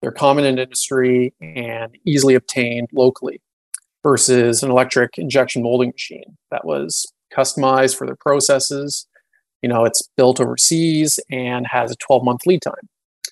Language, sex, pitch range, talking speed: English, male, 125-140 Hz, 140 wpm